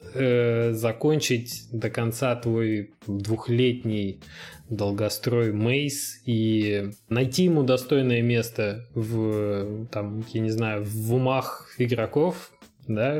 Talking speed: 95 wpm